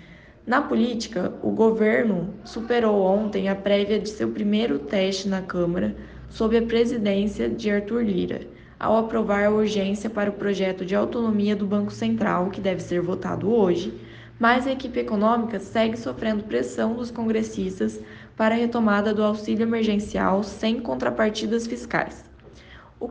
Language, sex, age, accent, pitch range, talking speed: Portuguese, female, 10-29, Brazilian, 195-225 Hz, 145 wpm